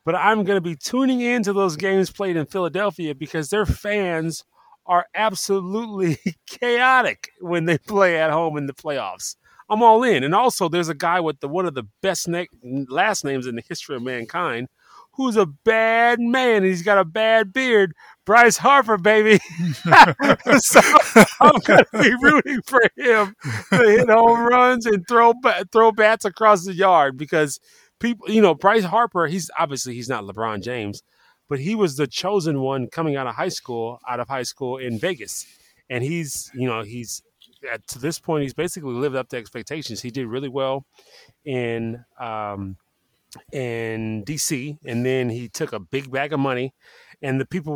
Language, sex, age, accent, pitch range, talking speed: English, male, 30-49, American, 130-205 Hz, 180 wpm